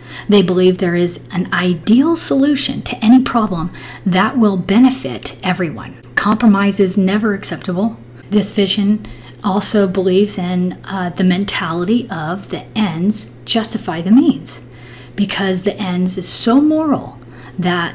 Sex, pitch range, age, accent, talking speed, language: female, 170-215 Hz, 40-59, American, 130 wpm, English